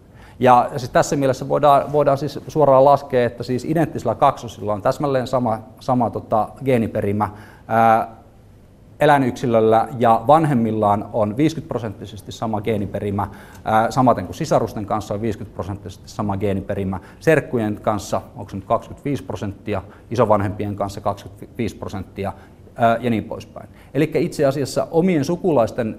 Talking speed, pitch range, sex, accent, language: 125 wpm, 105-135 Hz, male, native, Finnish